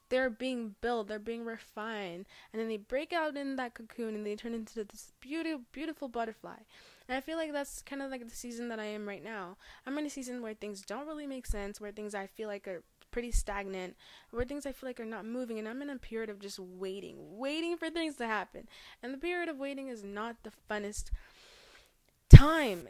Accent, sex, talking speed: American, female, 225 wpm